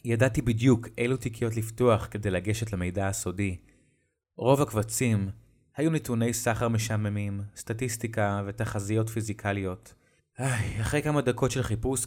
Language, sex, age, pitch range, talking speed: Hebrew, male, 20-39, 100-120 Hz, 120 wpm